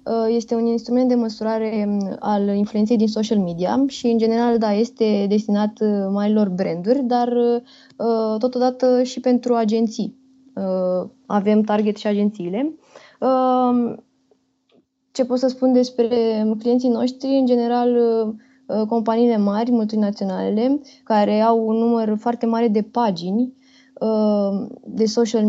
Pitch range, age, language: 210-240 Hz, 20-39, Romanian